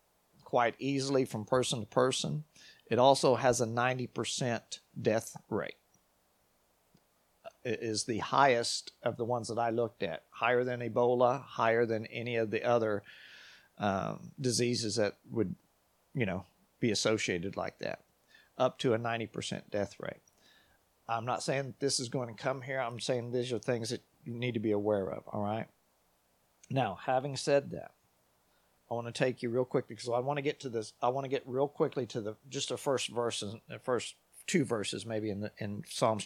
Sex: male